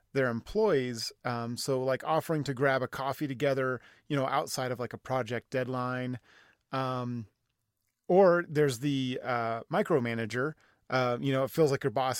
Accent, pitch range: American, 120-140 Hz